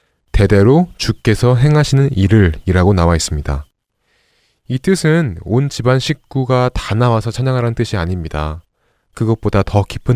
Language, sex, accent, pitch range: Korean, male, native, 95-130 Hz